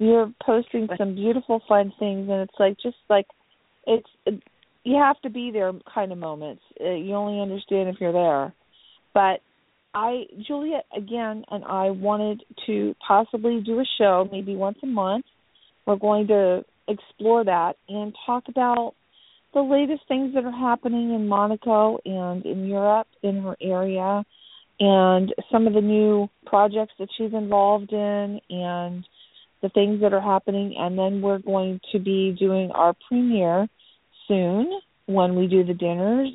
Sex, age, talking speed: female, 40-59, 155 wpm